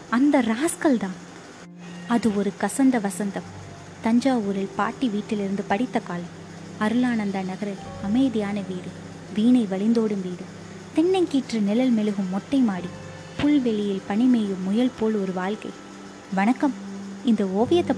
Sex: female